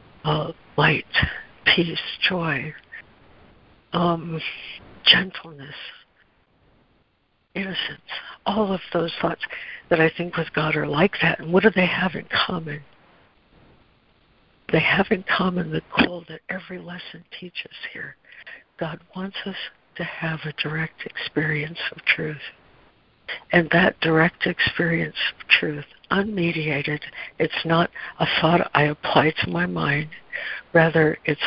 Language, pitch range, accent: English, 155-180 Hz, American